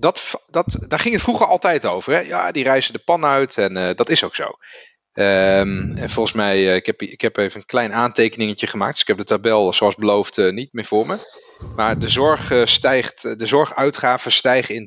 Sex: male